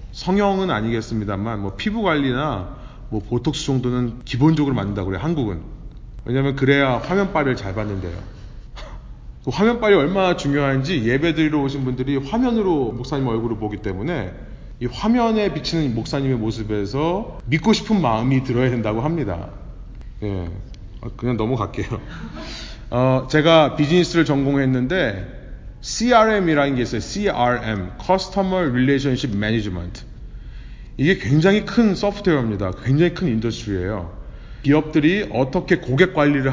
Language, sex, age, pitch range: Korean, male, 30-49, 115-175 Hz